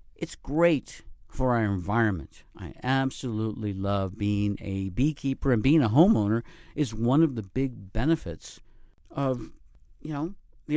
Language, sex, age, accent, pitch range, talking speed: English, male, 50-69, American, 105-135 Hz, 140 wpm